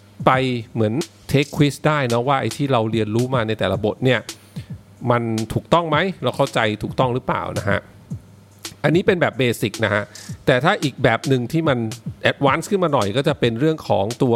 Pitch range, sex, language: 115-150 Hz, male, English